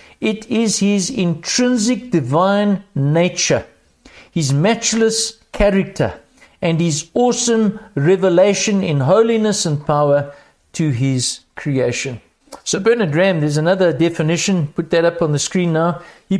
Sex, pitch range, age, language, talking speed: male, 150-205 Hz, 60-79, English, 125 wpm